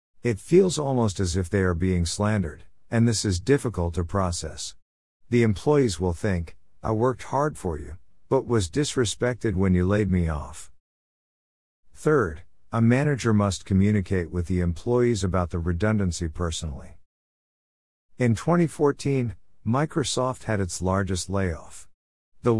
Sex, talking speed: male, 140 wpm